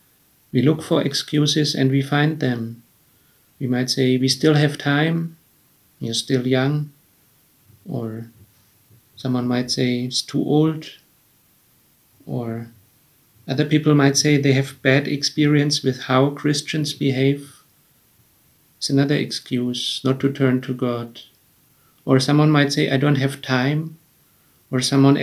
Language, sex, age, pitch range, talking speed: English, male, 50-69, 130-145 Hz, 135 wpm